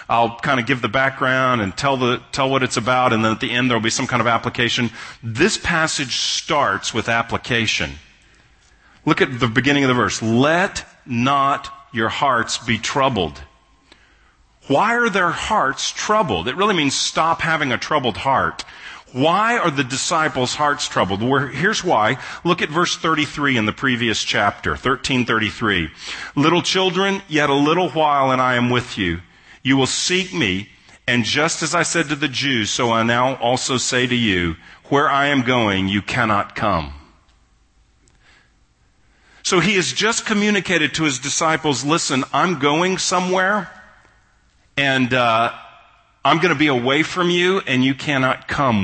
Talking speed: 165 wpm